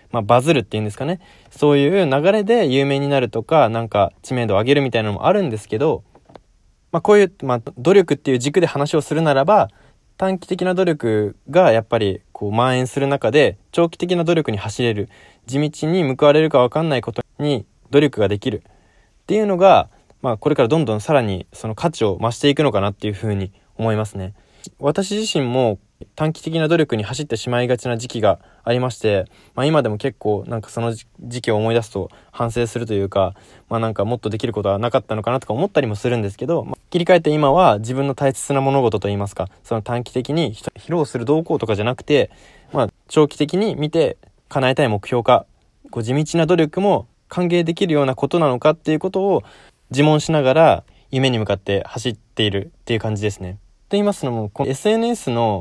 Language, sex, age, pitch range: Japanese, male, 20-39, 110-155 Hz